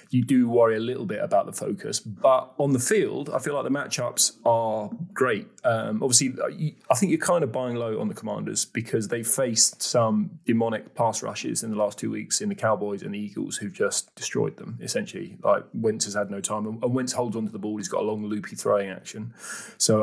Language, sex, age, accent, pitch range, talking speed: English, male, 30-49, British, 105-130 Hz, 225 wpm